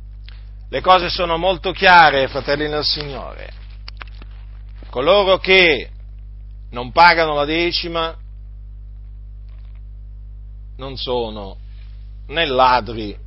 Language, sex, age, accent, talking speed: Italian, male, 50-69, native, 80 wpm